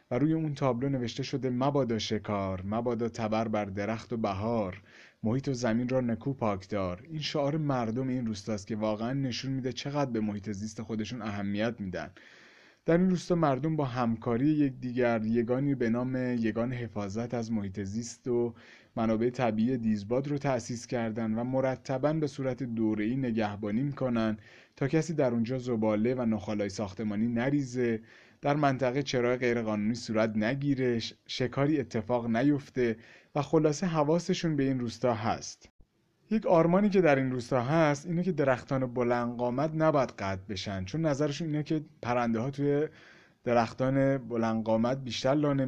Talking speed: 155 wpm